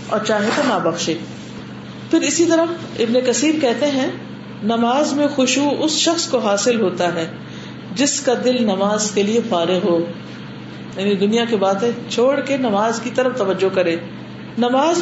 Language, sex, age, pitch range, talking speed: Urdu, female, 40-59, 195-275 Hz, 160 wpm